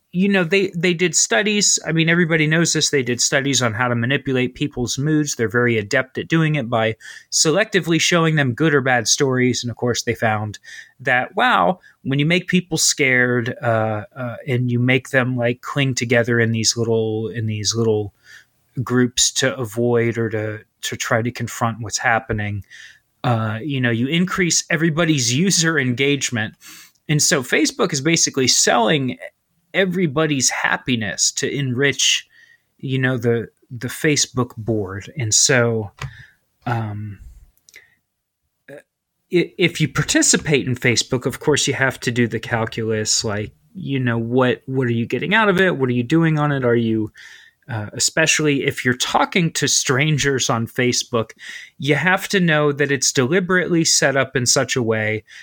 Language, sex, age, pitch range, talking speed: English, male, 30-49, 115-155 Hz, 165 wpm